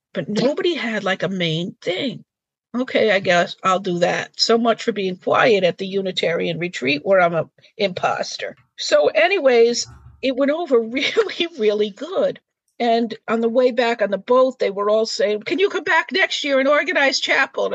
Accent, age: American, 50-69